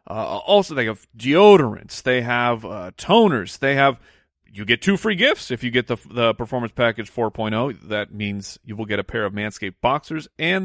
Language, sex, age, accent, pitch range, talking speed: English, male, 40-59, American, 120-175 Hz, 195 wpm